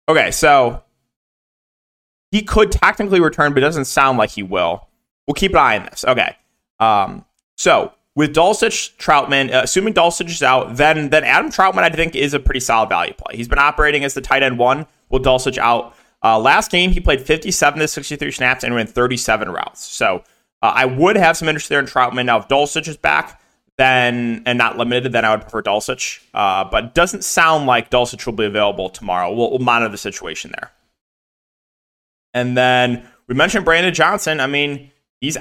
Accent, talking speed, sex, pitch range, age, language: American, 200 wpm, male, 120-150 Hz, 30-49, English